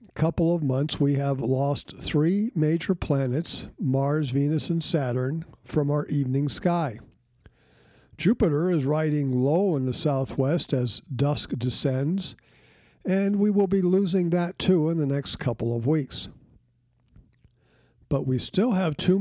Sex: male